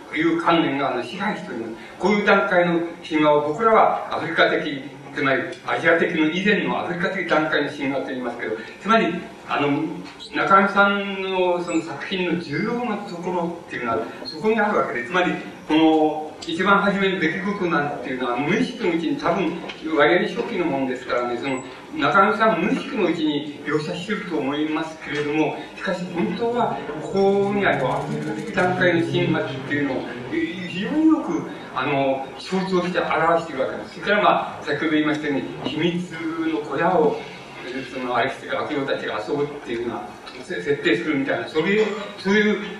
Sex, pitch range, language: male, 145-185 Hz, Japanese